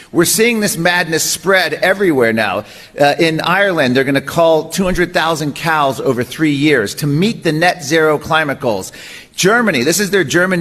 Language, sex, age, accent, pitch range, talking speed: English, male, 40-59, American, 150-205 Hz, 170 wpm